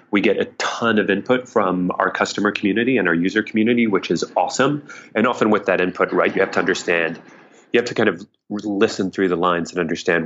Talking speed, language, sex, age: 220 wpm, English, male, 30-49